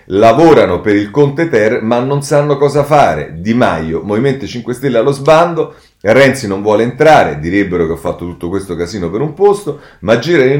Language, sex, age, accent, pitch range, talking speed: Italian, male, 40-59, native, 95-140 Hz, 190 wpm